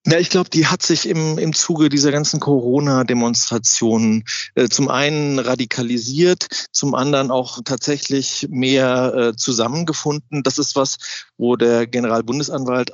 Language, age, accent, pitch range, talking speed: German, 40-59, German, 120-145 Hz, 135 wpm